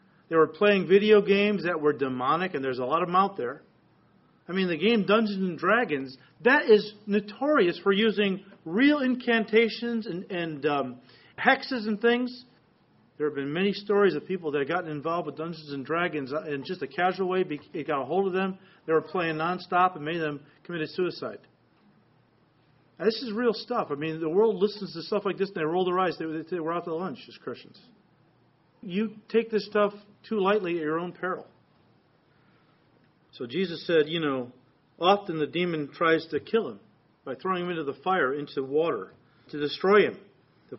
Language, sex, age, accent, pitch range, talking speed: English, male, 40-59, American, 150-200 Hz, 195 wpm